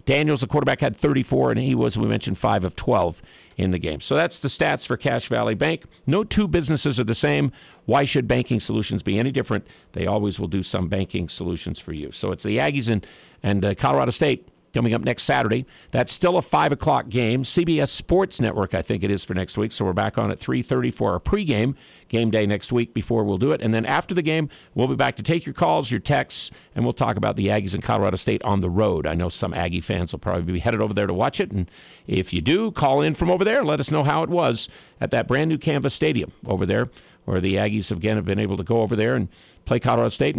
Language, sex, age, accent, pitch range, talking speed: English, male, 50-69, American, 100-145 Hz, 255 wpm